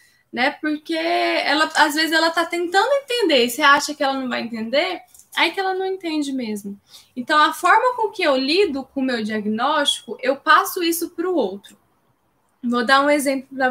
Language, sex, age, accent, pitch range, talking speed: Portuguese, female, 10-29, Brazilian, 235-305 Hz, 190 wpm